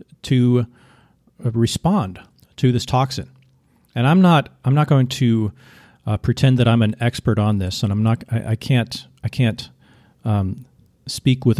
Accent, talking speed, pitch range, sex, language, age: American, 160 wpm, 105-130 Hz, male, English, 40-59